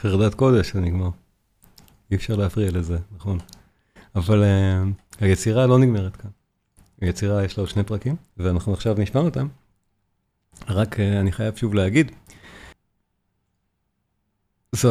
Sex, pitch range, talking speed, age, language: male, 100-140 Hz, 130 wpm, 40-59, Hebrew